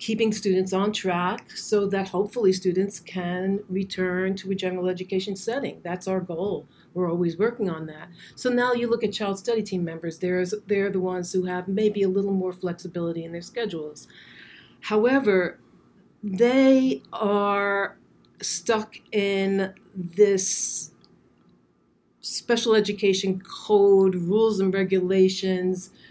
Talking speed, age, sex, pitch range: 130 wpm, 40-59, female, 170-200 Hz